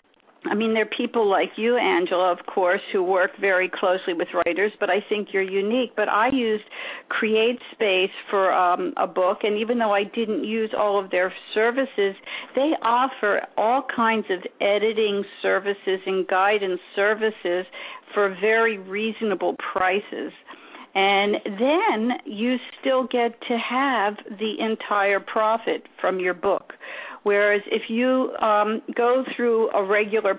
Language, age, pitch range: English, 50-69, 200-240 Hz